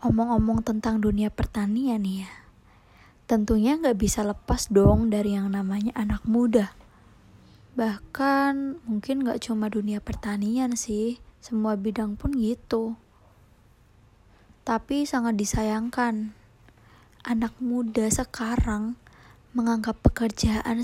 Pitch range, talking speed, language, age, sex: 205-240 Hz, 100 wpm, Indonesian, 20-39, female